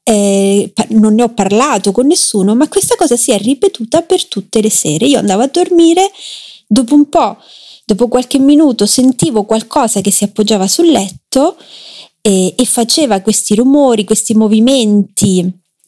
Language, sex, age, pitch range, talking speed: Italian, female, 30-49, 200-290 Hz, 160 wpm